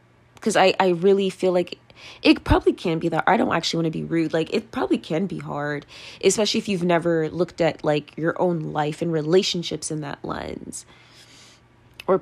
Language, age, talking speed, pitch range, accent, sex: English, 20-39, 195 wpm, 160-195 Hz, American, female